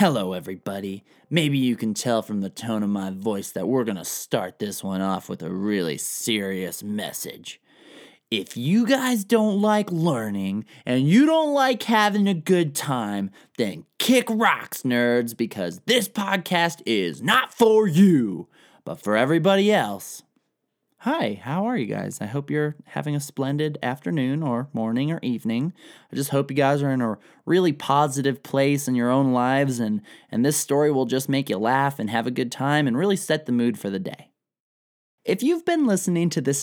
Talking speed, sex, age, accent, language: 185 wpm, male, 20-39, American, English